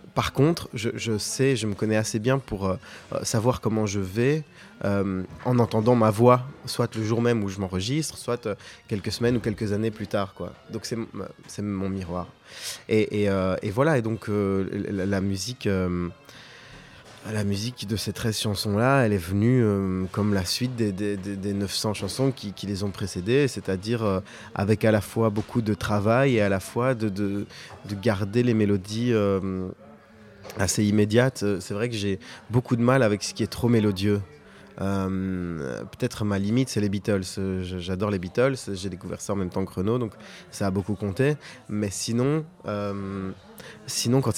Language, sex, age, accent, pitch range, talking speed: French, male, 20-39, French, 100-120 Hz, 195 wpm